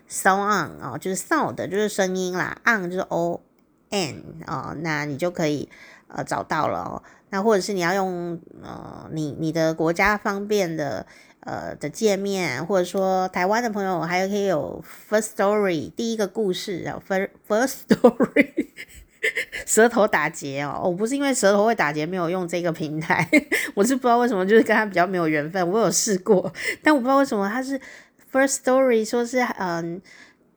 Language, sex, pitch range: Chinese, female, 170-225 Hz